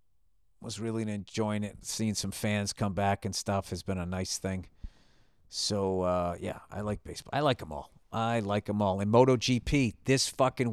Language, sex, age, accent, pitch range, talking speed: English, male, 50-69, American, 95-125 Hz, 190 wpm